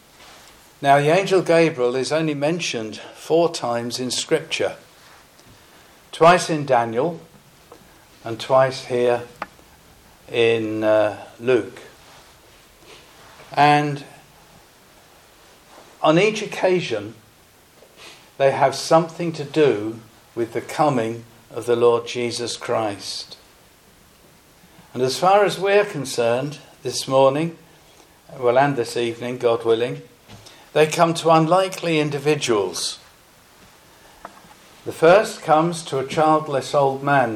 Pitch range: 120-155 Hz